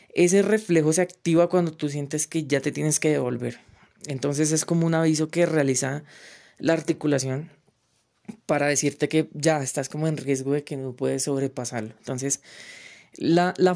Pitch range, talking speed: 140-175 Hz, 165 wpm